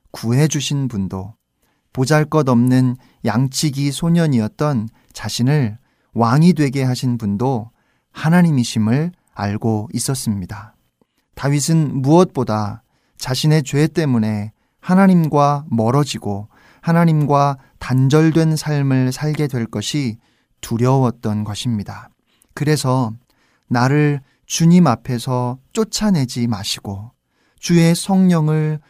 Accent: native